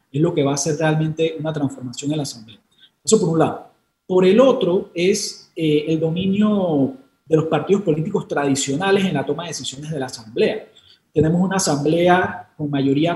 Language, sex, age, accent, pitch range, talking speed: Spanish, male, 30-49, Colombian, 145-185 Hz, 185 wpm